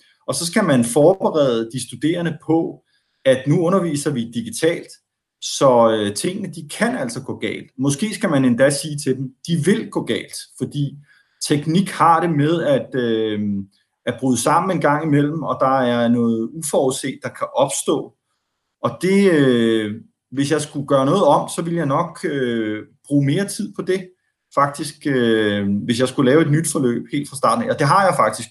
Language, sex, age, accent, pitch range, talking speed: Danish, male, 30-49, native, 120-160 Hz, 185 wpm